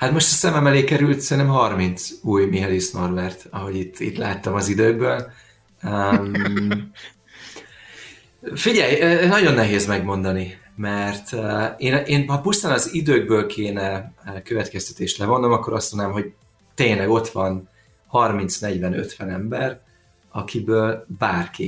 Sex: male